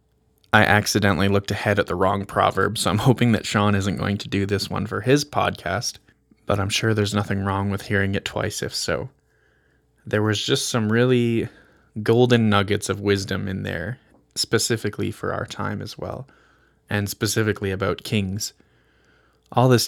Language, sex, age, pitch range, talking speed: English, male, 20-39, 100-110 Hz, 170 wpm